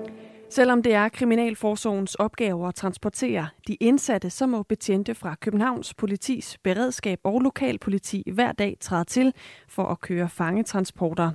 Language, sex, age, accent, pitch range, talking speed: Danish, female, 30-49, native, 180-225 Hz, 135 wpm